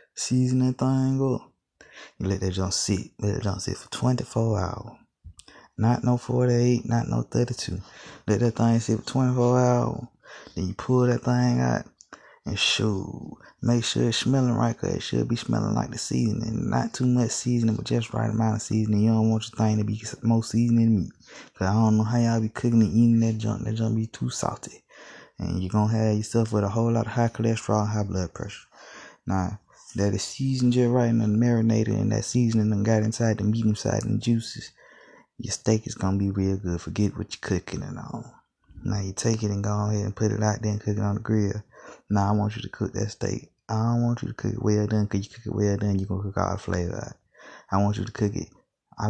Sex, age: male, 20-39